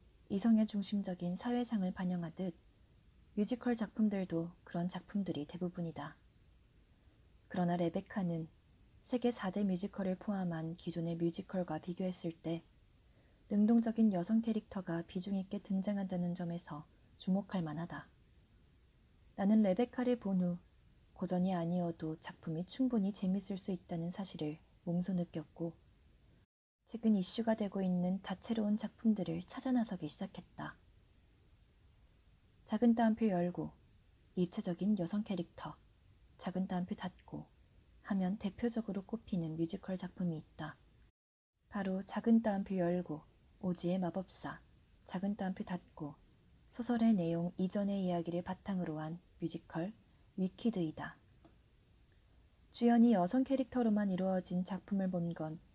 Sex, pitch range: female, 170-205 Hz